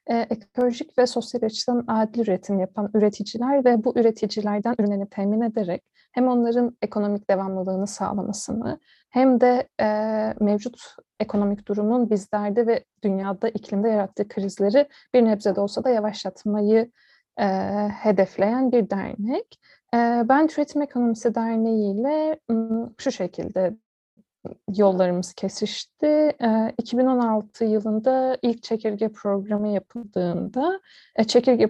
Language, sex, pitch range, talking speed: Turkish, female, 205-250 Hz, 110 wpm